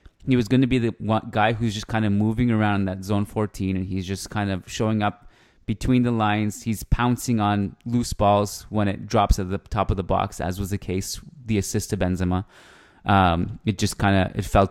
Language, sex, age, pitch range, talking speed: English, male, 20-39, 95-115 Hz, 230 wpm